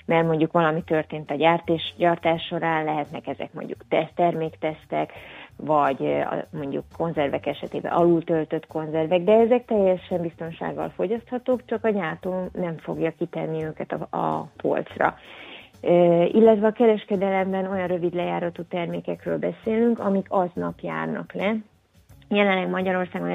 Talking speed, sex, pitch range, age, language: 120 wpm, female, 160-190 Hz, 30-49, Hungarian